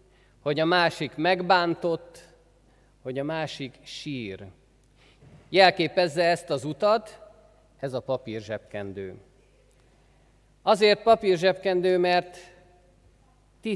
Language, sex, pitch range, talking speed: Hungarian, male, 115-175 Hz, 85 wpm